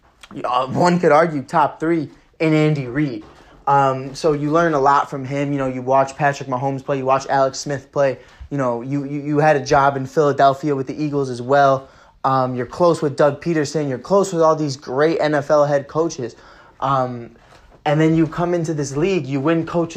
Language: English